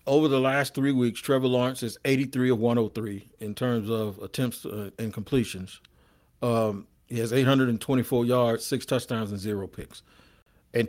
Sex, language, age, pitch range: male, English, 40-59, 115-135 Hz